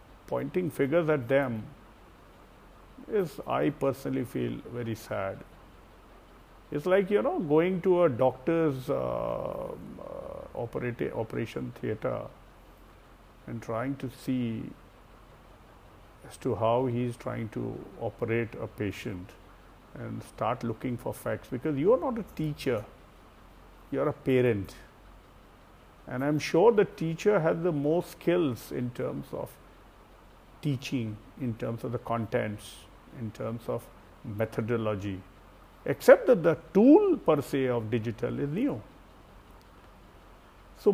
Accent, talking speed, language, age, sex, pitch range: Indian, 120 wpm, English, 50-69, male, 105-145 Hz